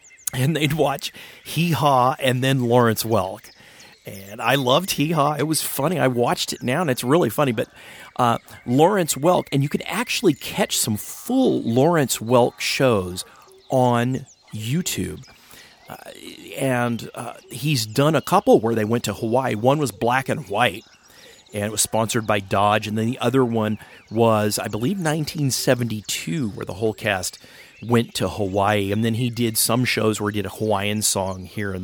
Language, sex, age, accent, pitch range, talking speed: English, male, 40-59, American, 105-135 Hz, 175 wpm